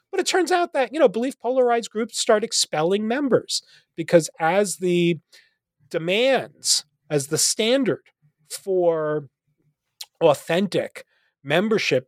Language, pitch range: English, 160-235 Hz